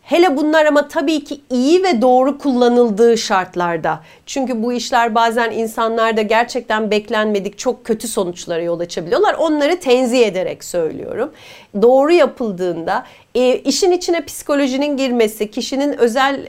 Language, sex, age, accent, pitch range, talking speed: Turkish, female, 40-59, native, 220-275 Hz, 125 wpm